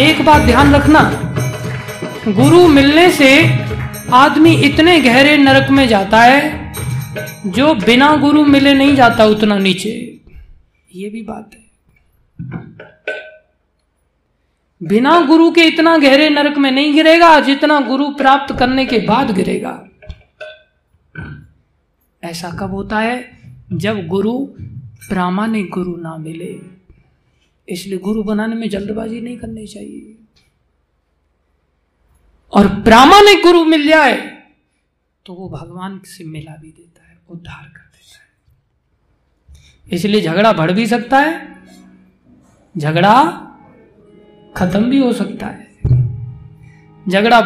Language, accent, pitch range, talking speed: Hindi, native, 165-270 Hz, 115 wpm